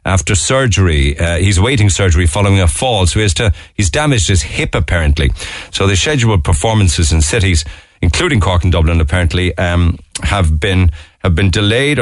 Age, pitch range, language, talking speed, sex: 50-69, 85-110 Hz, English, 175 wpm, male